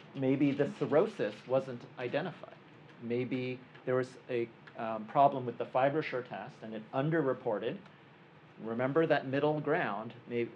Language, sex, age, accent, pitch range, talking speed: English, male, 40-59, American, 115-155 Hz, 130 wpm